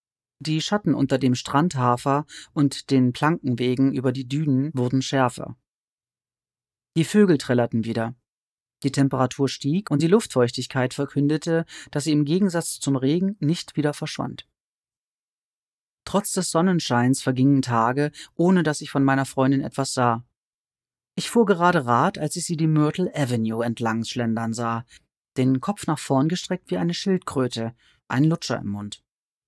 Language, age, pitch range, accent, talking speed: German, 40-59, 125-165 Hz, German, 145 wpm